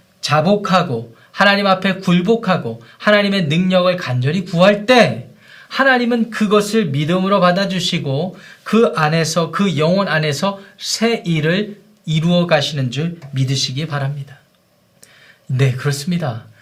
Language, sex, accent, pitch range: Korean, male, native, 160-210 Hz